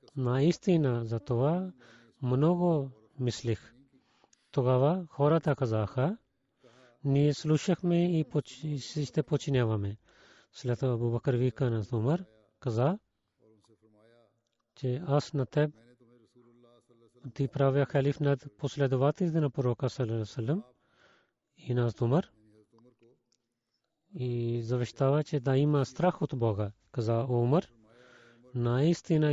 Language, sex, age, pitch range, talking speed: Bulgarian, male, 40-59, 120-150 Hz, 100 wpm